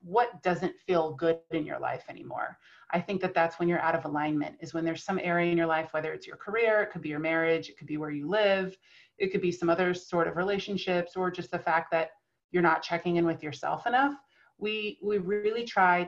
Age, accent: 30-49, American